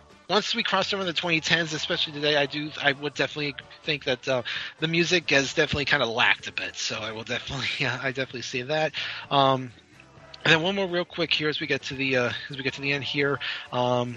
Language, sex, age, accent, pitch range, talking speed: English, male, 30-49, American, 130-165 Hz, 235 wpm